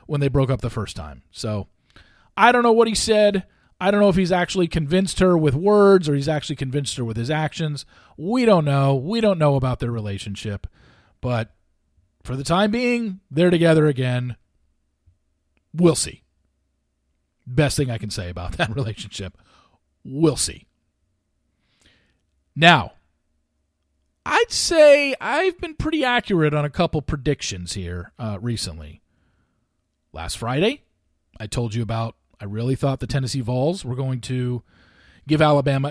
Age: 40-59